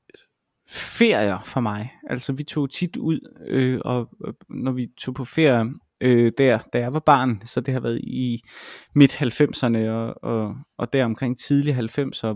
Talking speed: 175 wpm